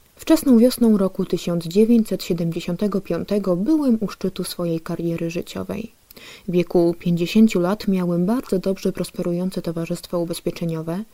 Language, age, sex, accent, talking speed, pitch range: Polish, 20-39, female, native, 110 wpm, 170-205 Hz